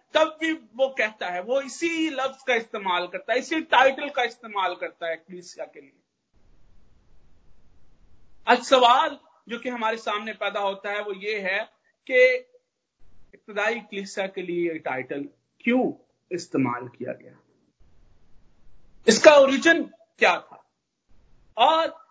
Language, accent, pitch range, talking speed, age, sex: Hindi, native, 170-265 Hz, 135 wpm, 50-69, male